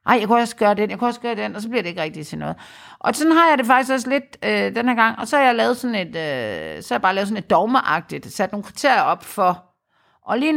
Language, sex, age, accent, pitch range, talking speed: Danish, female, 50-69, native, 190-255 Hz, 300 wpm